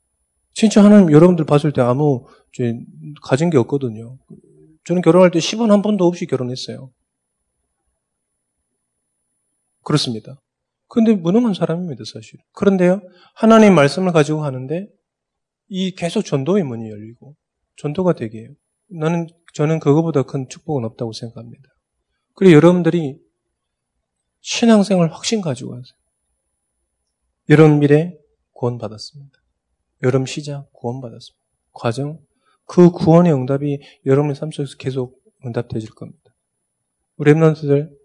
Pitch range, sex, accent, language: 120-165 Hz, male, native, Korean